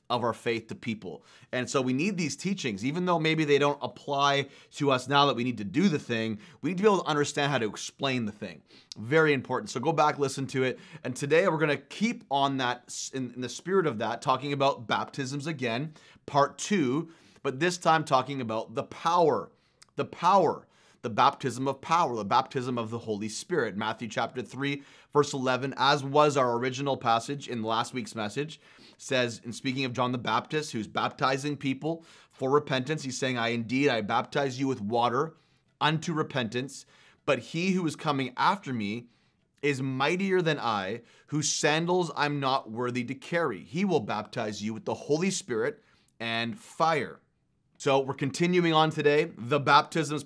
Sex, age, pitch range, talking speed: male, 30-49, 125-150 Hz, 190 wpm